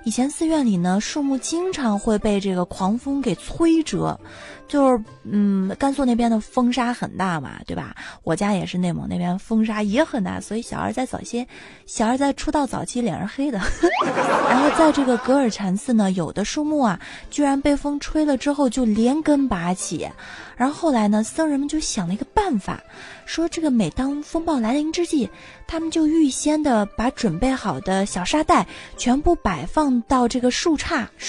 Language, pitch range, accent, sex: Chinese, 205-300 Hz, native, female